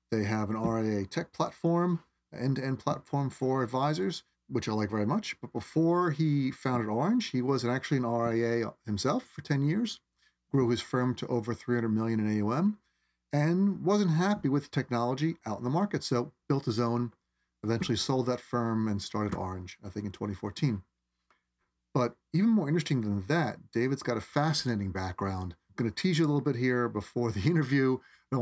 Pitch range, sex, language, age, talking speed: 110-145 Hz, male, English, 40-59, 180 wpm